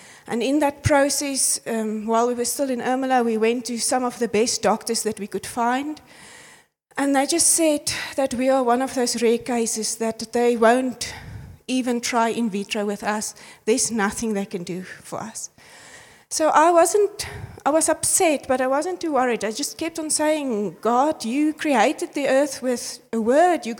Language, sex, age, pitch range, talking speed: English, female, 30-49, 225-275 Hz, 190 wpm